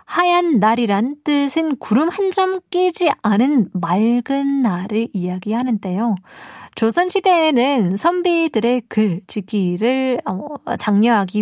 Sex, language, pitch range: female, Korean, 200-275 Hz